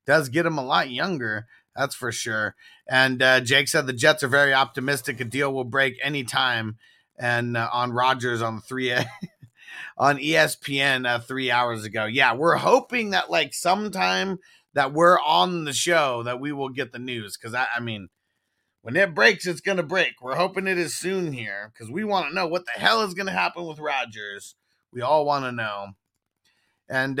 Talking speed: 190 wpm